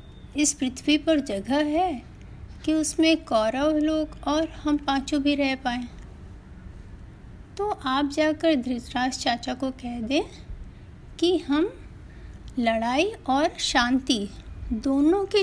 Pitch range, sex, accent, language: 235-310 Hz, female, native, Hindi